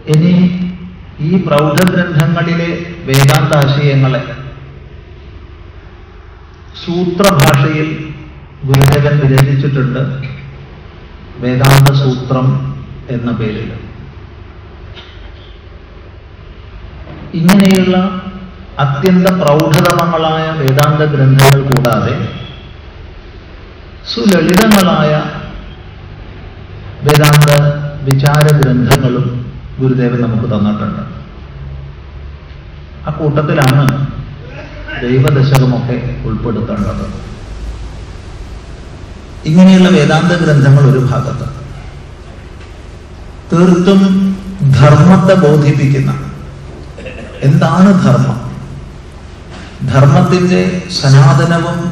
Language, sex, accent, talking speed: Malayalam, male, native, 45 wpm